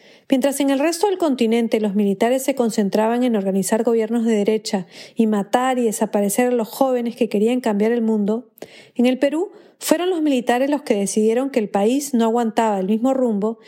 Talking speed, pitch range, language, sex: 195 wpm, 215-270 Hz, Spanish, female